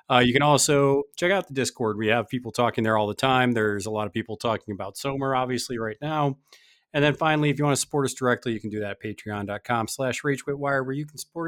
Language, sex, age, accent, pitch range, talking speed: English, male, 30-49, American, 110-135 Hz, 250 wpm